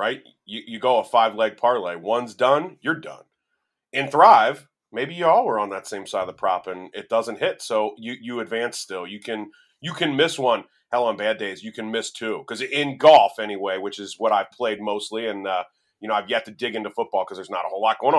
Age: 30-49